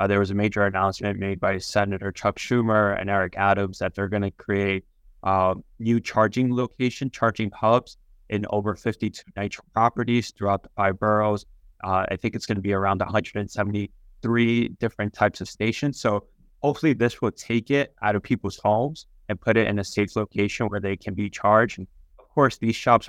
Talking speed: 195 wpm